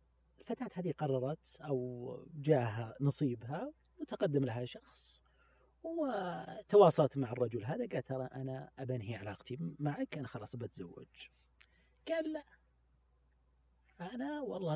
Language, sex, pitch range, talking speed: Arabic, male, 110-170 Hz, 105 wpm